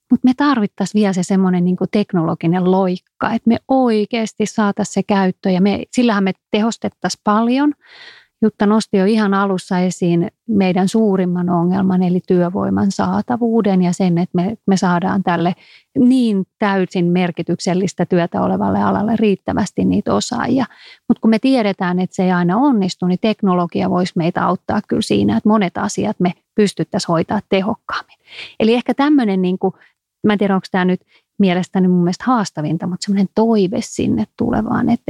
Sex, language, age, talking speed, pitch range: female, Finnish, 30-49, 155 wpm, 180-220 Hz